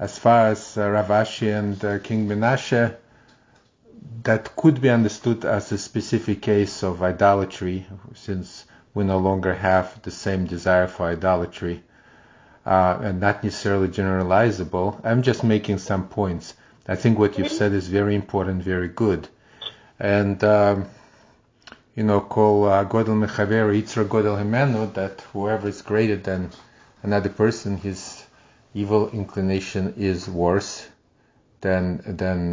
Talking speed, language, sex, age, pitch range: 135 wpm, English, male, 30-49, 95-110 Hz